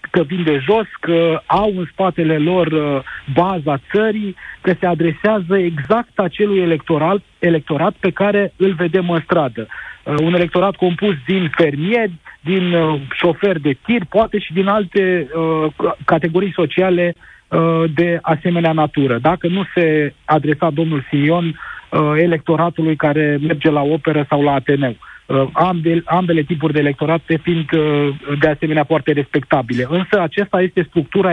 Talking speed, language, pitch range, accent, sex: 145 wpm, Romanian, 155-185 Hz, native, male